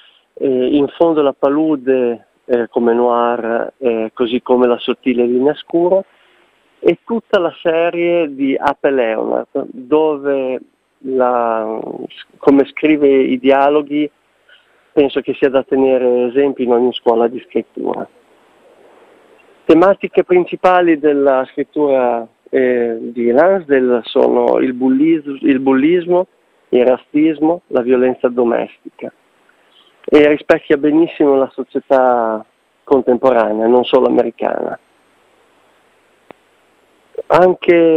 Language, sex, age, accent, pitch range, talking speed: Italian, male, 40-59, native, 125-155 Hz, 105 wpm